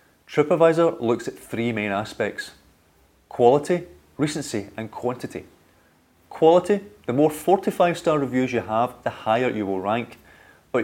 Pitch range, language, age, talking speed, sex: 105-140 Hz, English, 30-49, 135 wpm, male